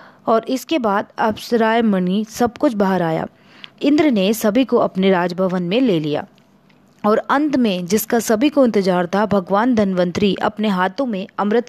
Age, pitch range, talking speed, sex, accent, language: 20-39, 190-245 Hz, 160 wpm, female, native, Hindi